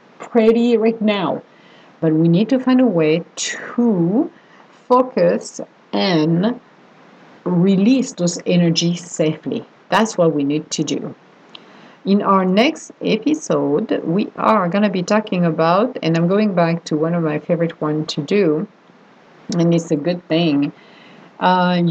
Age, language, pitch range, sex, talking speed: 50-69, English, 160-210 Hz, female, 140 wpm